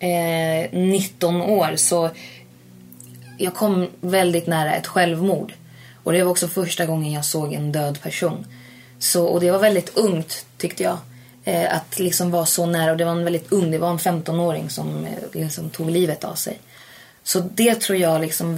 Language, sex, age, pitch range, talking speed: Swedish, female, 20-39, 155-175 Hz, 175 wpm